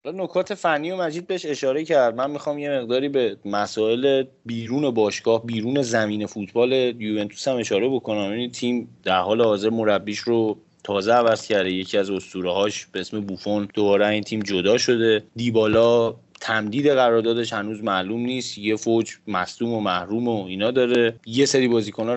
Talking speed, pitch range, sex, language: 165 wpm, 105-125 Hz, male, Persian